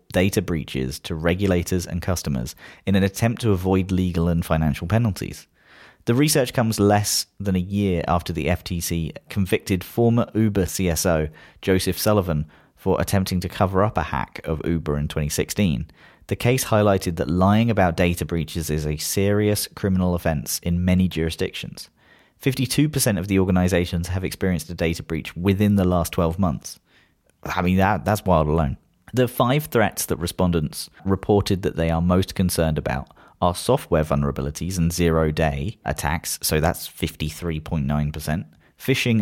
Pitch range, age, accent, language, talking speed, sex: 80-100 Hz, 30-49, British, English, 150 wpm, male